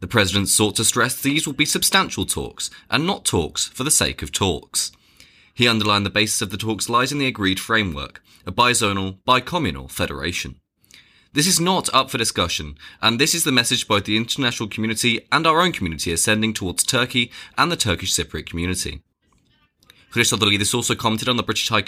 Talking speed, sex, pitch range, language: 190 wpm, male, 90-140 Hz, English